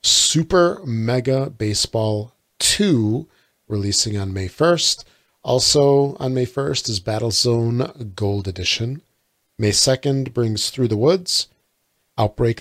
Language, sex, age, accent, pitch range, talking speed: English, male, 40-59, American, 105-130 Hz, 110 wpm